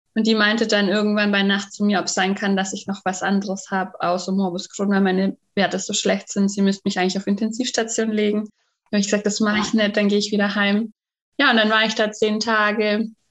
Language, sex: German, female